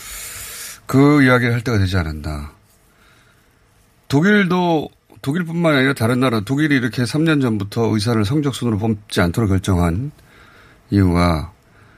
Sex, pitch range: male, 100-135 Hz